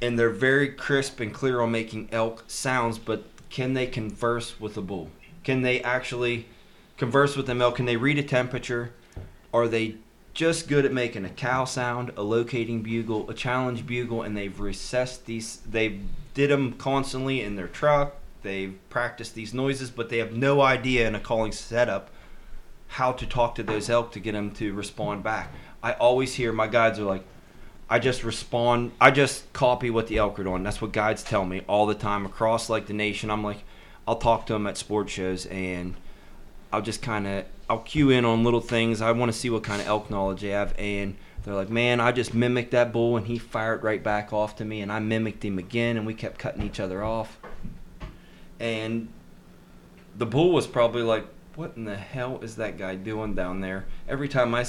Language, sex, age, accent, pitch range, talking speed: English, male, 20-39, American, 105-125 Hz, 205 wpm